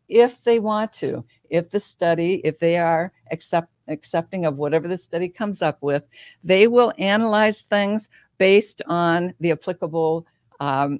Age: 60-79